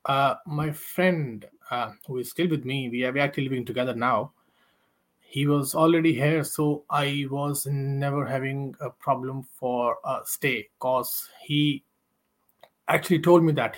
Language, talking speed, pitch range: Portuguese, 155 wpm, 125-155 Hz